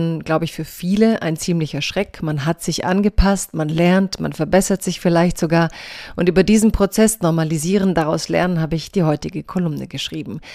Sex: female